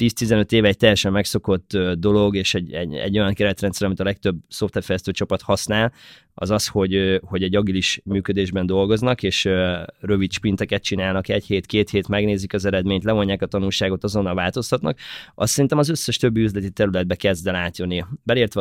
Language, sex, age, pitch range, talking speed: Hungarian, male, 20-39, 95-115 Hz, 170 wpm